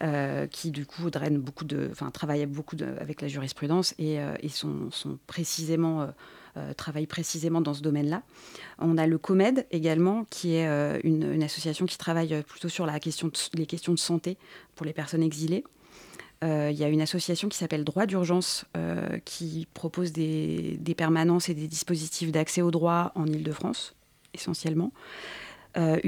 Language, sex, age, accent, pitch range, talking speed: French, female, 30-49, French, 155-175 Hz, 180 wpm